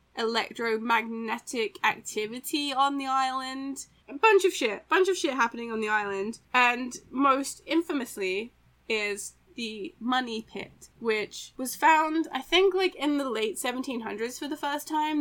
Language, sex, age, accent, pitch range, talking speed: English, female, 10-29, British, 215-270 Hz, 145 wpm